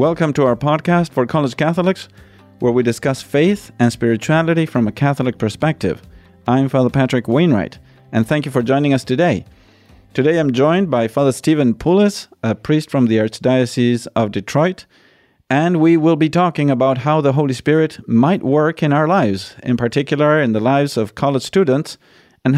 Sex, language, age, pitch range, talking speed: male, English, 40-59, 115-150 Hz, 175 wpm